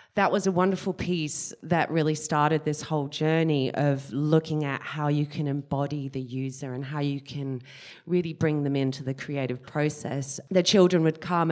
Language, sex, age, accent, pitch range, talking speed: English, female, 30-49, Australian, 140-180 Hz, 180 wpm